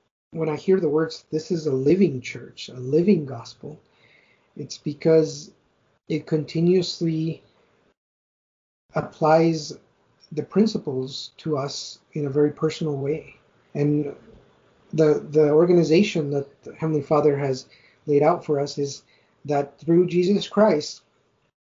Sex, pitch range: male, 145-170 Hz